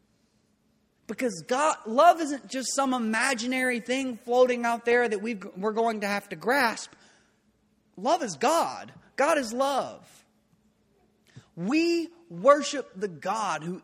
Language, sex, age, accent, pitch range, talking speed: English, male, 30-49, American, 150-230 Hz, 120 wpm